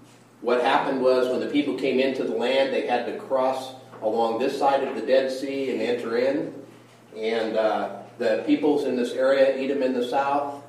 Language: English